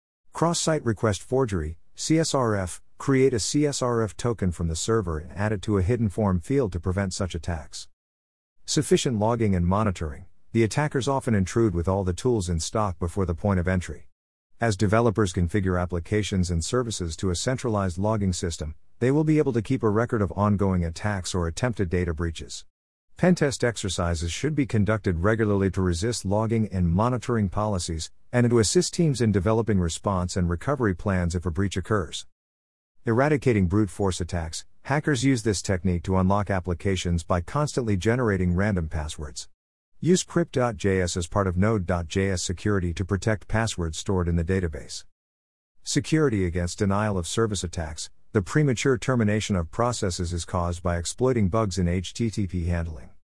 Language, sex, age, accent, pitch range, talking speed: English, male, 50-69, American, 85-115 Hz, 160 wpm